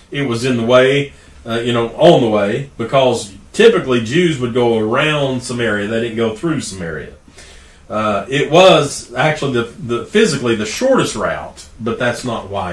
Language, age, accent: English, 40-59, American